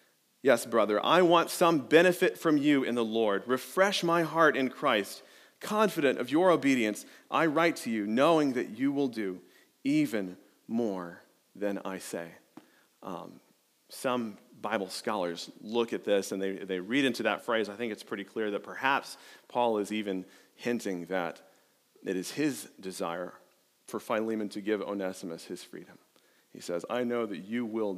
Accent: American